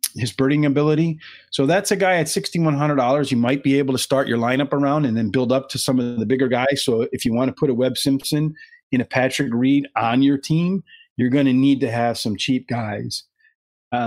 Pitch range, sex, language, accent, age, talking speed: 130-155 Hz, male, English, American, 40-59, 230 wpm